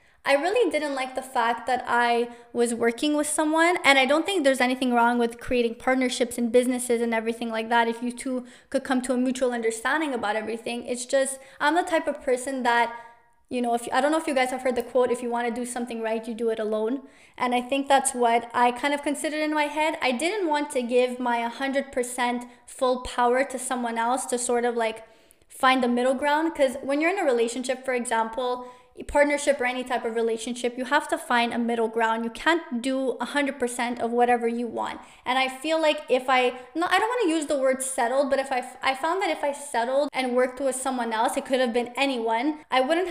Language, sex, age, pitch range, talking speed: English, female, 20-39, 240-275 Hz, 235 wpm